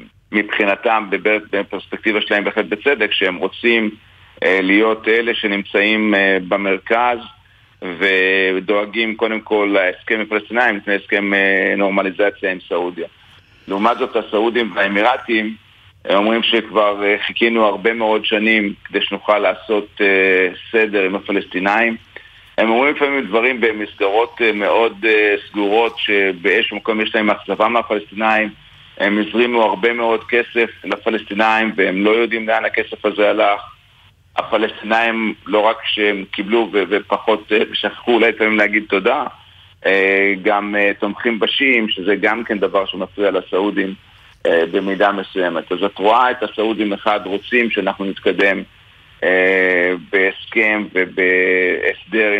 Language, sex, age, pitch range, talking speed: Hebrew, male, 50-69, 100-110 Hz, 115 wpm